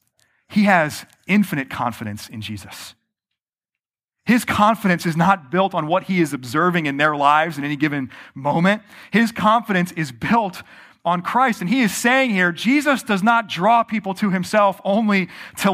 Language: English